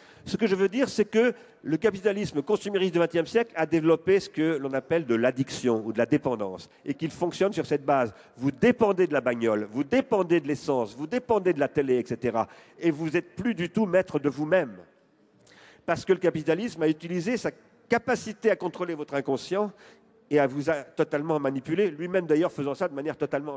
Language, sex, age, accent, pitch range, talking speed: French, male, 50-69, French, 135-185 Hz, 205 wpm